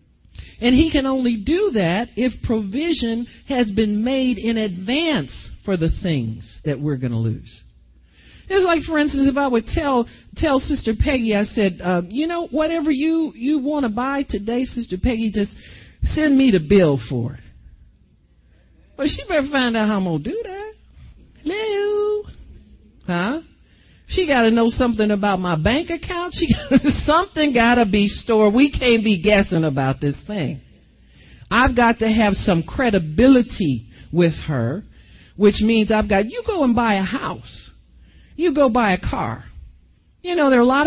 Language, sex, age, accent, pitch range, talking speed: English, male, 50-69, American, 180-270 Hz, 175 wpm